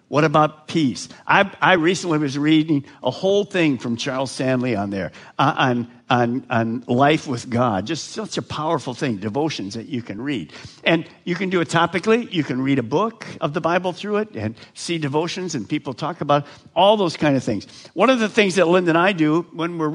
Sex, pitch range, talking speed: male, 135-175 Hz, 220 wpm